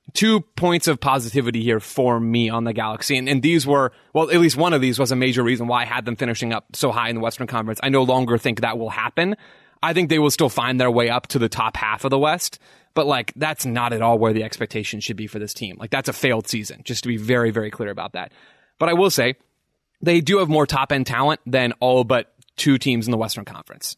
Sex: male